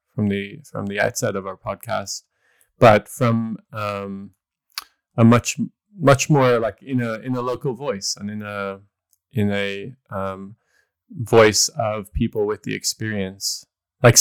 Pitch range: 100-120 Hz